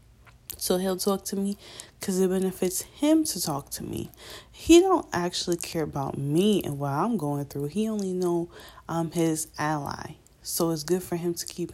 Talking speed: 190 wpm